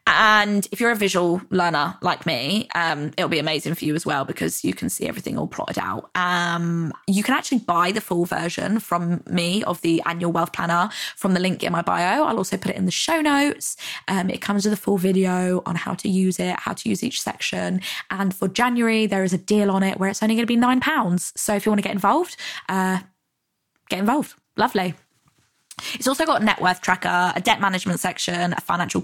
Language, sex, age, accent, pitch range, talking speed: English, female, 20-39, British, 175-210 Hz, 230 wpm